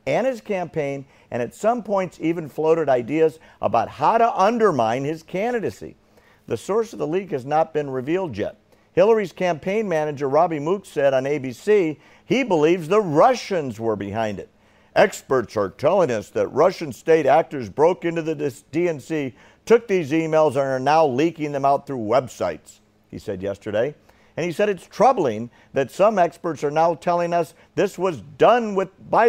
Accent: American